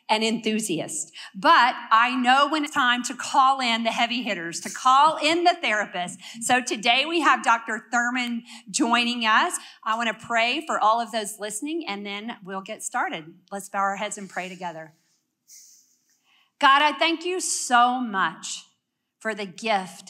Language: English